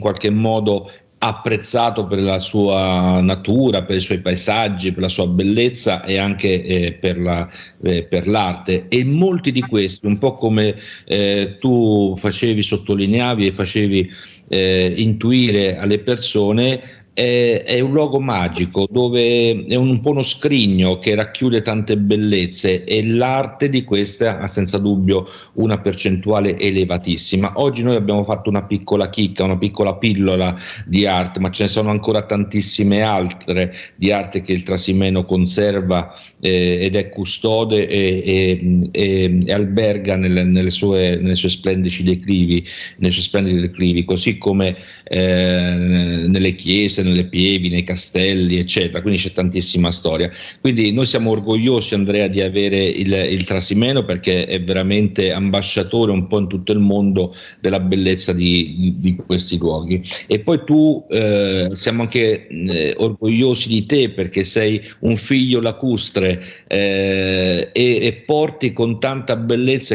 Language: Italian